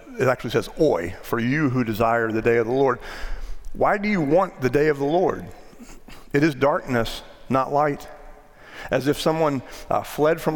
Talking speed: 190 wpm